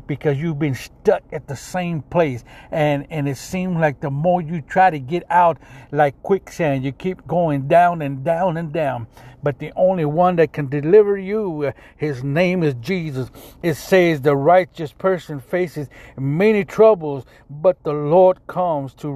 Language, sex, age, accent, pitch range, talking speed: English, male, 60-79, American, 140-180 Hz, 170 wpm